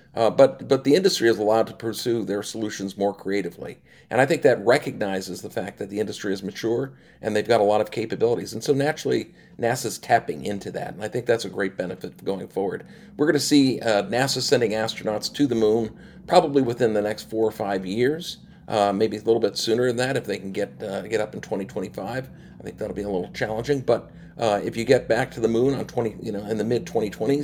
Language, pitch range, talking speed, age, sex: English, 105-130 Hz, 235 wpm, 50-69, male